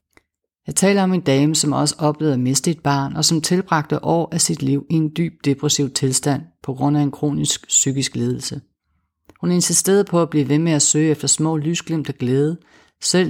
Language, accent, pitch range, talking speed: Danish, native, 135-160 Hz, 205 wpm